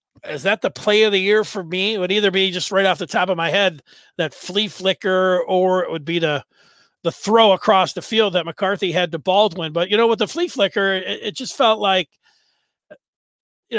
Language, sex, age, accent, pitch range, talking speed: English, male, 40-59, American, 180-215 Hz, 225 wpm